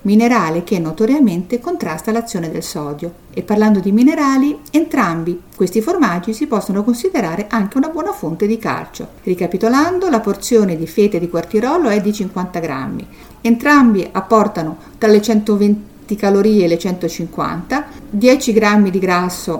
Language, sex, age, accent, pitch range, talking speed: Italian, female, 50-69, native, 170-235 Hz, 145 wpm